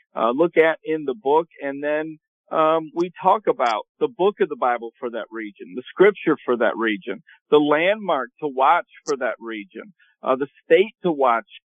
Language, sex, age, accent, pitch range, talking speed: English, male, 50-69, American, 145-195 Hz, 190 wpm